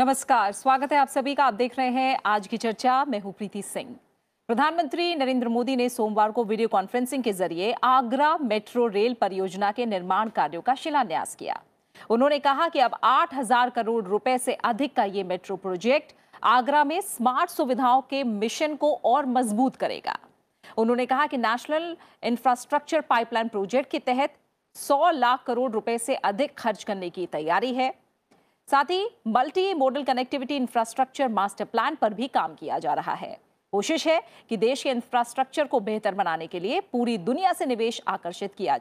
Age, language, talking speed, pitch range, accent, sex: 40-59, Hindi, 175 wpm, 220-285 Hz, native, female